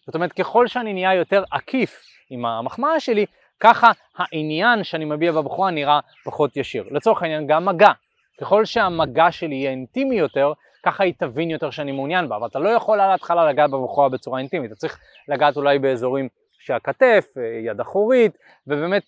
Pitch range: 145-195 Hz